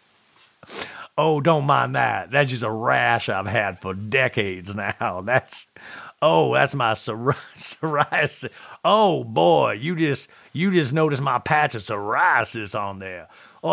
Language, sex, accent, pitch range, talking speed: English, male, American, 115-165 Hz, 140 wpm